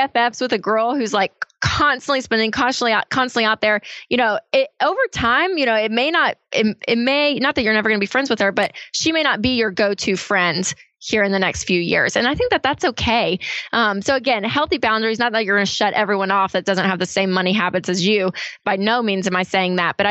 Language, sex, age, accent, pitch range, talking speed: English, female, 20-39, American, 190-245 Hz, 250 wpm